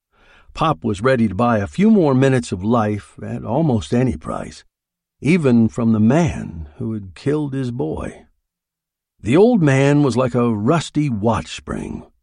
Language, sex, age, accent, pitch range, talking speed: English, male, 60-79, American, 105-135 Hz, 160 wpm